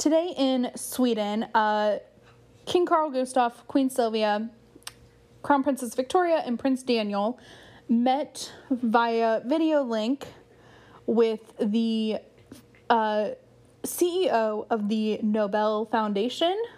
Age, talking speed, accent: 10-29, 95 wpm, American